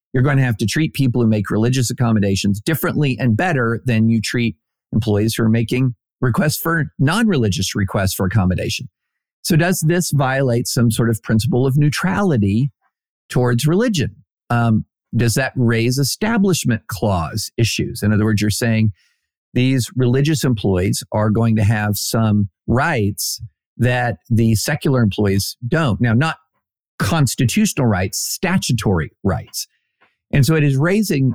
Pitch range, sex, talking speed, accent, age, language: 110-145 Hz, male, 145 wpm, American, 50-69, English